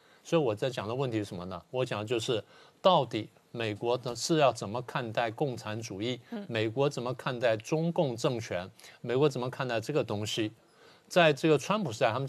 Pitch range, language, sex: 120-155 Hz, Chinese, male